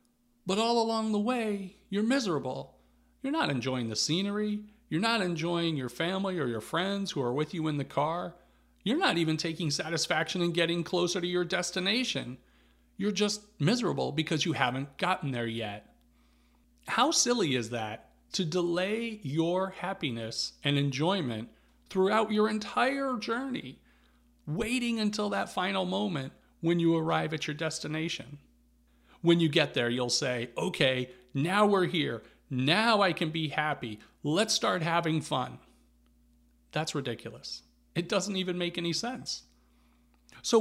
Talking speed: 150 wpm